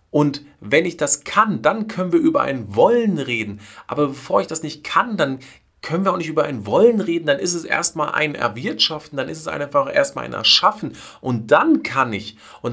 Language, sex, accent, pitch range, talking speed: German, male, German, 120-170 Hz, 210 wpm